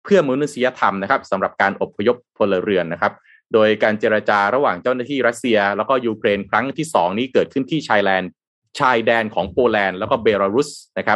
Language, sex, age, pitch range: Thai, male, 20-39, 90-125 Hz